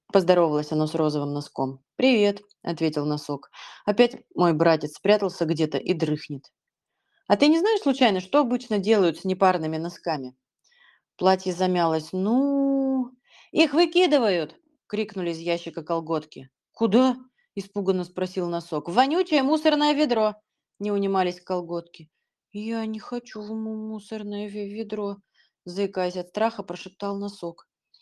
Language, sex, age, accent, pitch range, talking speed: Russian, female, 30-49, native, 170-245 Hz, 130 wpm